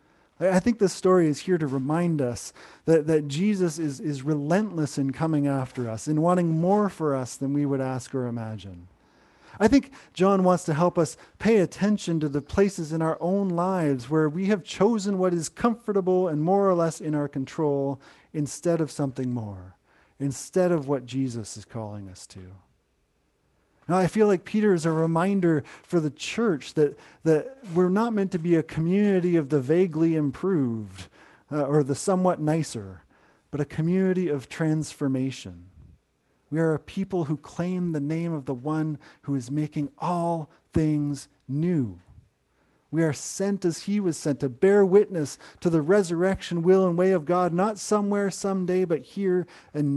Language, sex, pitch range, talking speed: English, male, 140-185 Hz, 175 wpm